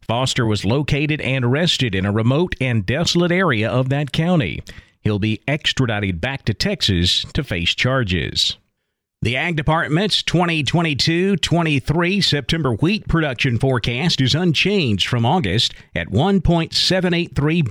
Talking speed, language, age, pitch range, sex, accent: 125 wpm, English, 50-69, 115-165 Hz, male, American